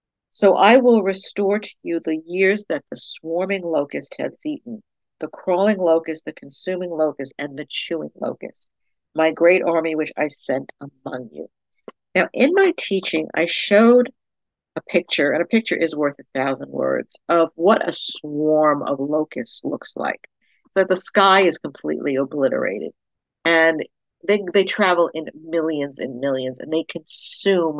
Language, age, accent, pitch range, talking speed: English, 50-69, American, 150-195 Hz, 160 wpm